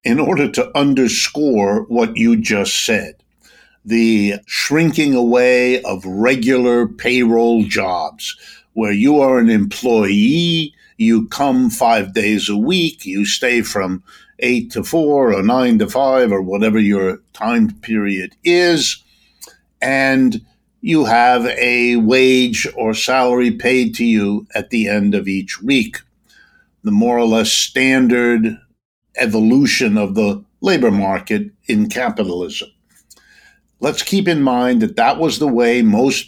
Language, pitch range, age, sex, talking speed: English, 115-190 Hz, 60-79, male, 130 wpm